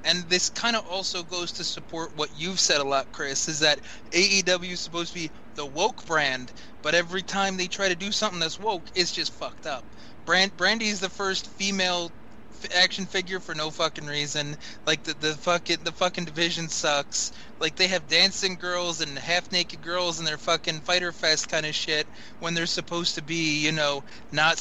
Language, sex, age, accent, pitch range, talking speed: English, male, 20-39, American, 150-180 Hz, 200 wpm